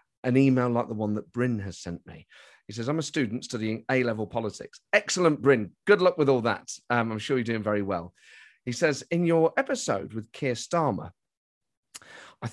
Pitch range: 115-185 Hz